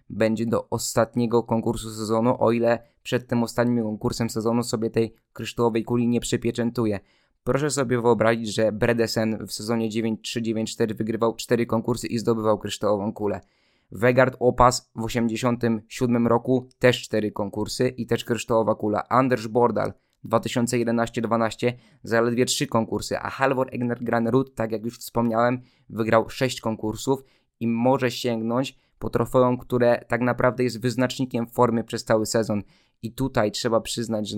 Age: 20-39